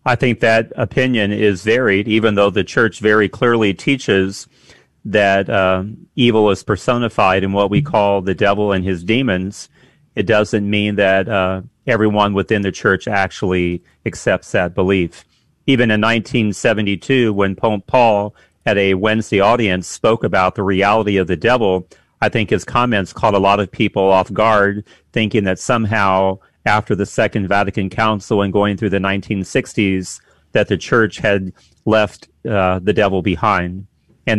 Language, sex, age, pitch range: English, male, 40-59, 95-110 Hz